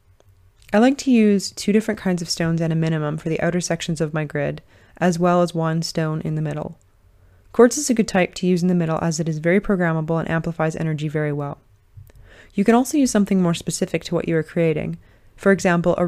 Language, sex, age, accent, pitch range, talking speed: English, female, 30-49, American, 145-180 Hz, 230 wpm